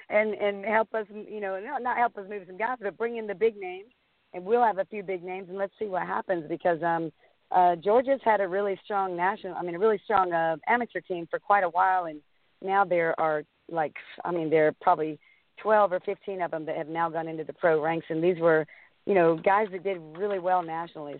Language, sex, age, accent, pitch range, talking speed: English, female, 50-69, American, 165-200 Hz, 240 wpm